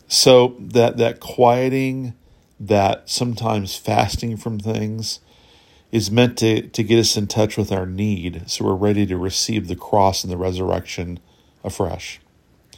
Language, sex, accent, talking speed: English, male, American, 145 wpm